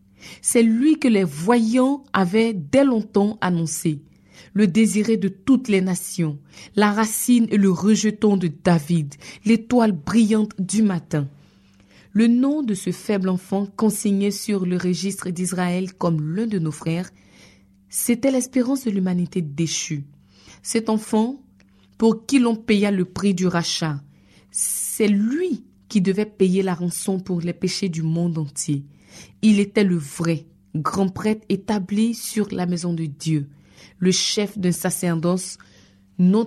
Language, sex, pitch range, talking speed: French, female, 165-215 Hz, 145 wpm